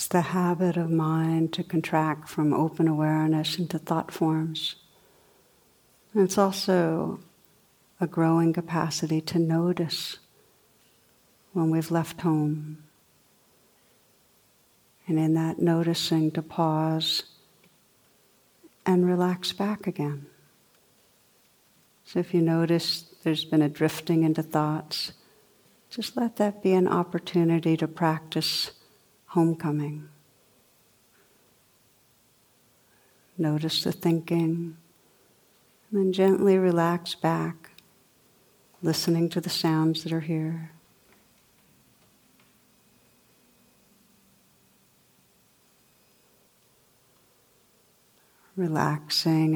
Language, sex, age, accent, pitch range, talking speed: English, female, 60-79, American, 155-175 Hz, 85 wpm